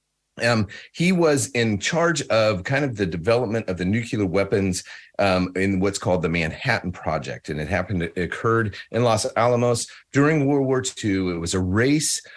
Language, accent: English, American